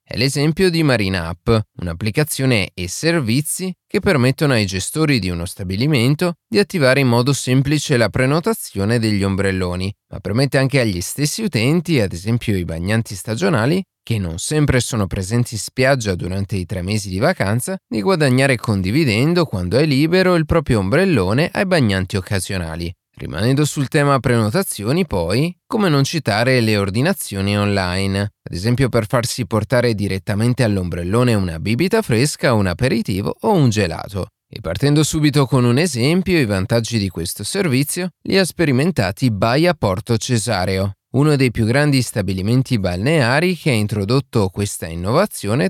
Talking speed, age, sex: 150 wpm, 30-49, male